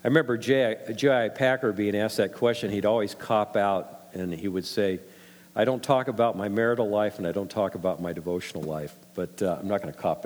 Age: 50-69